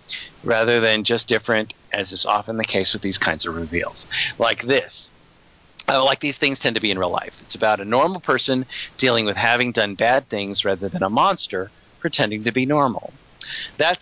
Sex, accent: male, American